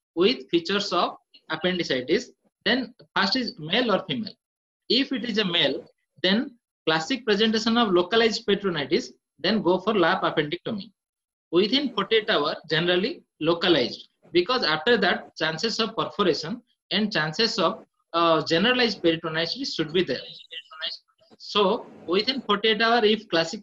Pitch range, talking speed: 175-230 Hz, 130 wpm